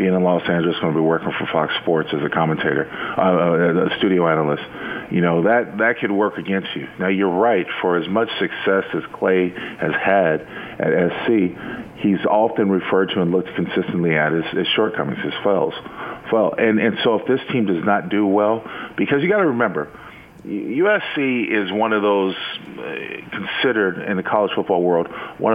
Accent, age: American, 40-59